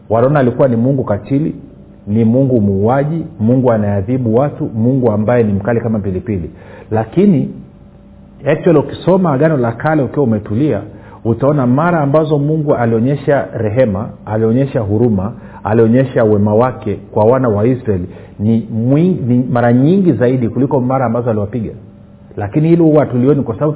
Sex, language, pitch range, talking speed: male, Swahili, 105-135 Hz, 140 wpm